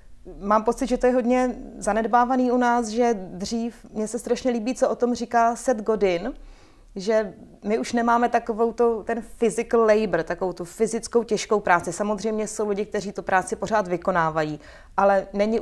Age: 30-49